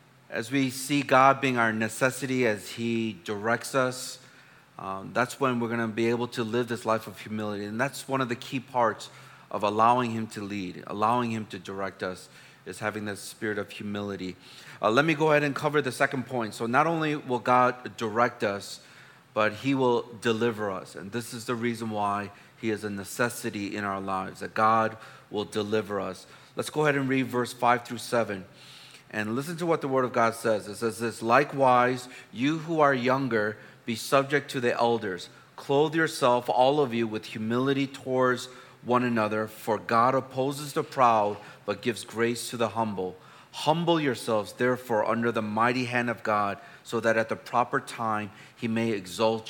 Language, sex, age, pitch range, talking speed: English, male, 30-49, 110-130 Hz, 190 wpm